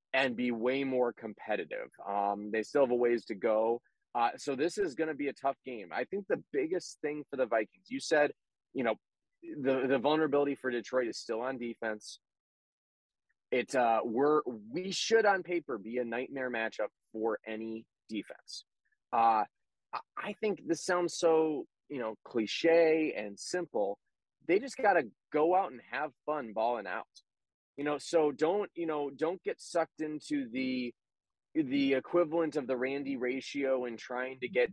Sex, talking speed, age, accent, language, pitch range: male, 175 wpm, 30-49, American, English, 125-170 Hz